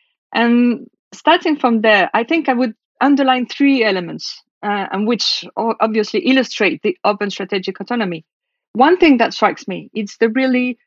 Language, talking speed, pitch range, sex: English, 155 wpm, 200-245 Hz, female